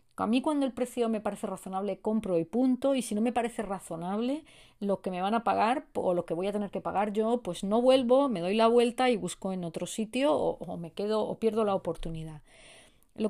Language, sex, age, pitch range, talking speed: Spanish, female, 40-59, 190-240 Hz, 240 wpm